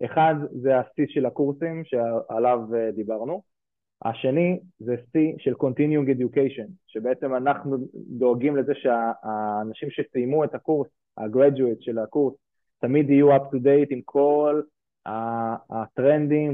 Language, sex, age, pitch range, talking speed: Hebrew, male, 20-39, 120-145 Hz, 120 wpm